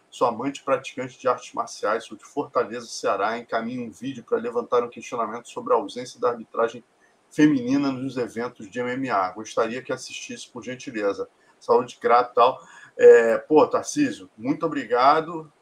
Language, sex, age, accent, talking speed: Portuguese, male, 40-59, Brazilian, 155 wpm